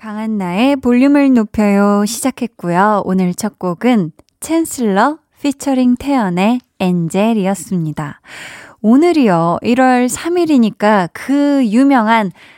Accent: native